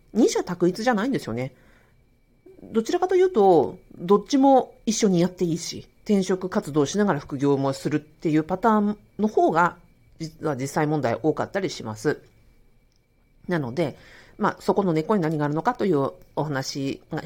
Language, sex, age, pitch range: Japanese, female, 40-59, 145-210 Hz